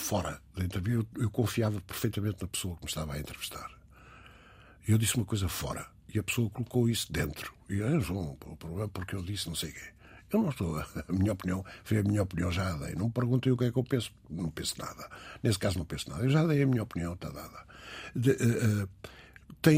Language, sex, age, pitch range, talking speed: Portuguese, male, 60-79, 95-130 Hz, 235 wpm